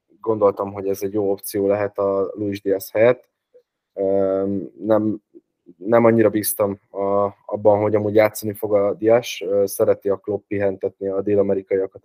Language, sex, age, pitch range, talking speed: Hungarian, male, 20-39, 100-110 Hz, 145 wpm